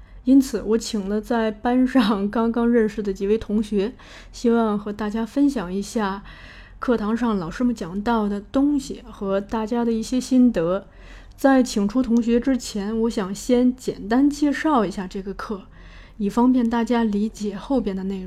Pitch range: 205-250 Hz